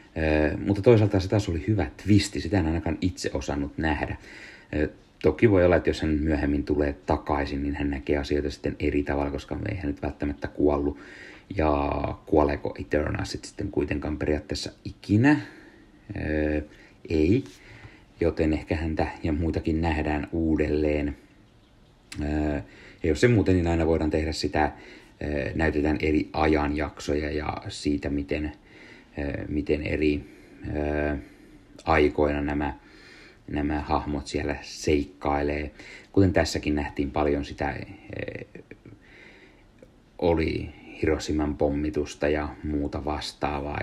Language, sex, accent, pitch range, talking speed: Finnish, male, native, 75-85 Hz, 125 wpm